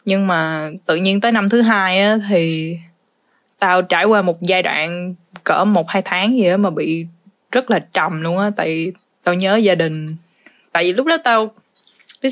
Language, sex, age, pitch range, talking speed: Vietnamese, female, 10-29, 175-210 Hz, 195 wpm